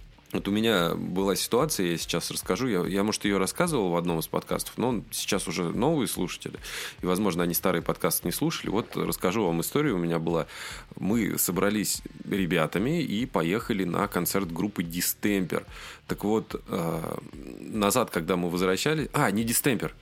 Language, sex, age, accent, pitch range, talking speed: Russian, male, 20-39, native, 90-115 Hz, 160 wpm